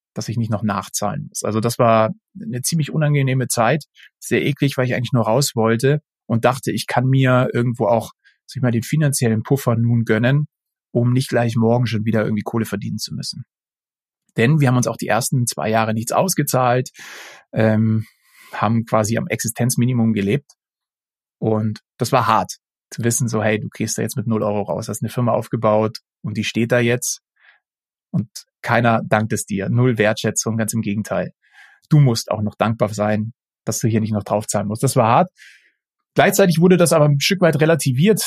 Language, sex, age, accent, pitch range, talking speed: German, male, 30-49, German, 110-130 Hz, 195 wpm